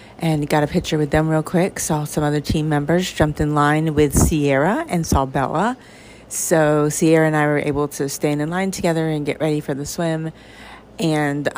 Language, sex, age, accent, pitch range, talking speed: English, female, 40-59, American, 135-175 Hz, 200 wpm